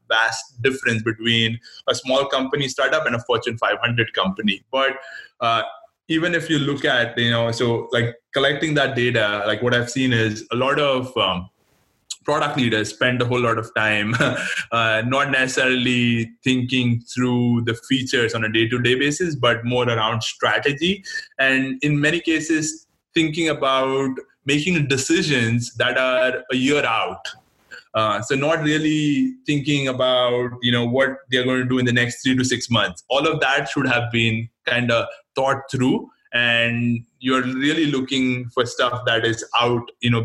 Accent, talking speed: Indian, 170 wpm